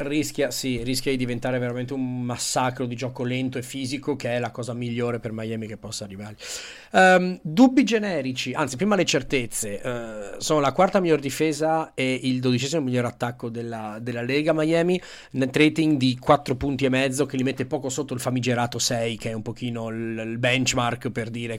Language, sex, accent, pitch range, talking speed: Italian, male, native, 120-155 Hz, 190 wpm